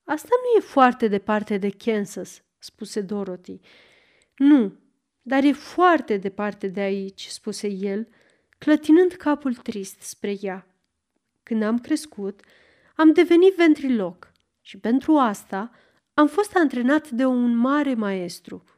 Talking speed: 130 wpm